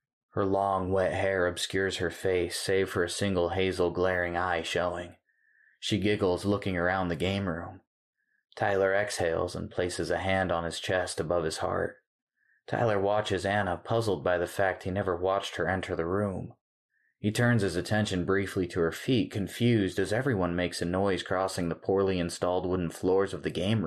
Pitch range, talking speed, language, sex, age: 90-105 Hz, 180 wpm, English, male, 20-39